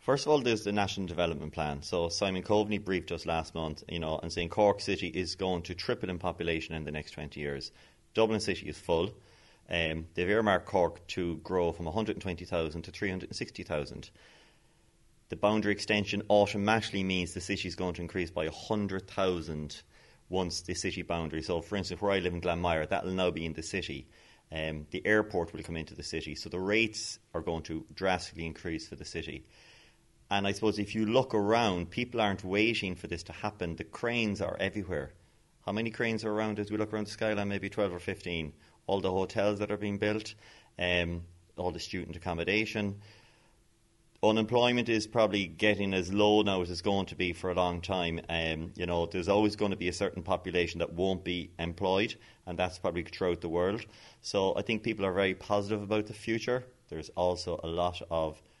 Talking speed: 200 wpm